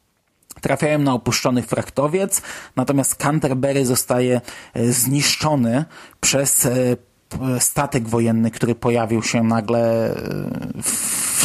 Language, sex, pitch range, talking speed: Polish, male, 125-145 Hz, 85 wpm